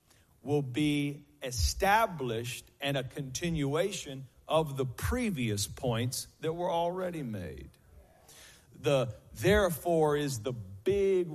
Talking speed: 100 wpm